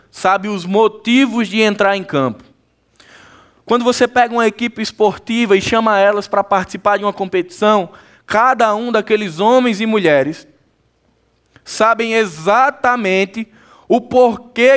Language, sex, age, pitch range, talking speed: Portuguese, male, 20-39, 185-230 Hz, 125 wpm